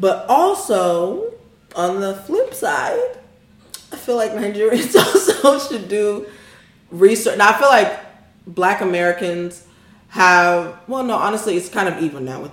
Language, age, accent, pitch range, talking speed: English, 20-39, American, 150-175 Hz, 145 wpm